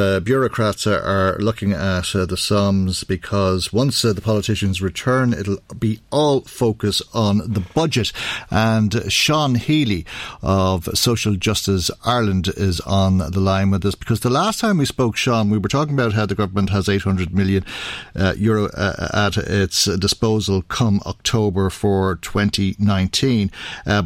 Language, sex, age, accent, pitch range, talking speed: English, male, 50-69, Irish, 95-115 Hz, 150 wpm